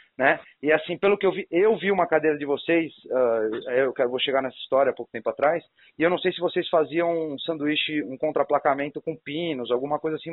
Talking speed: 225 wpm